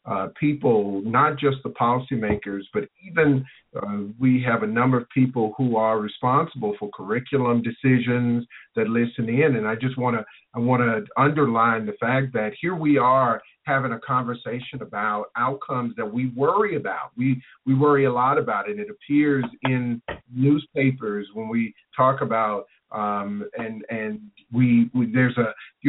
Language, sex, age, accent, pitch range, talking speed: English, male, 50-69, American, 110-135 Hz, 165 wpm